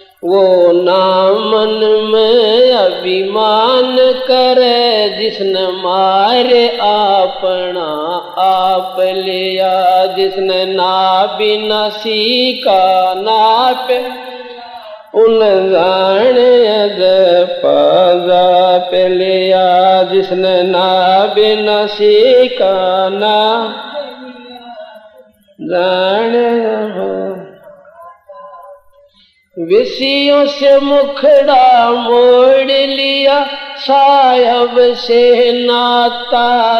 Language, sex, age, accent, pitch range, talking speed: Hindi, male, 50-69, native, 190-250 Hz, 45 wpm